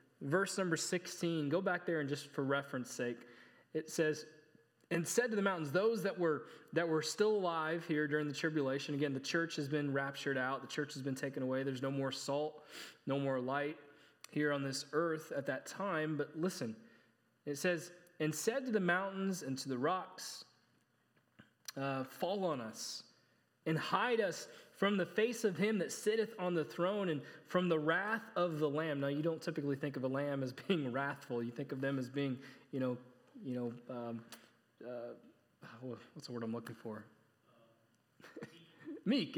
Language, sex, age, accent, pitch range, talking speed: English, male, 20-39, American, 135-170 Hz, 185 wpm